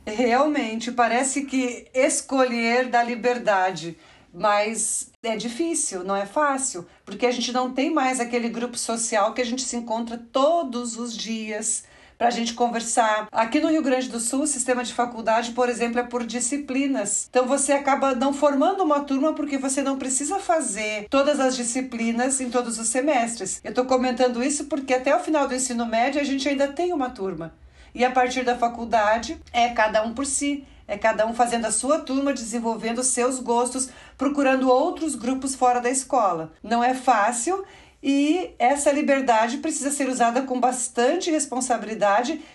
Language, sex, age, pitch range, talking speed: Portuguese, female, 50-69, 235-280 Hz, 175 wpm